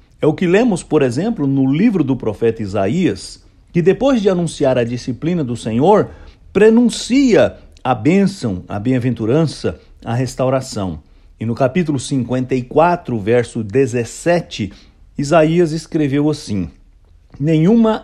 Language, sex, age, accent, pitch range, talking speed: English, male, 60-79, Brazilian, 110-165 Hz, 120 wpm